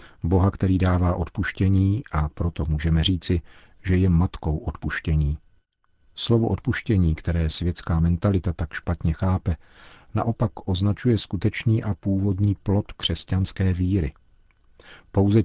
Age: 50-69